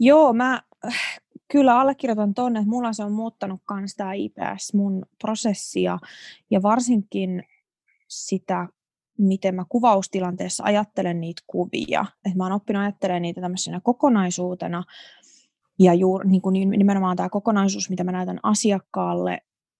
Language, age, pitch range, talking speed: Finnish, 20-39, 185-210 Hz, 125 wpm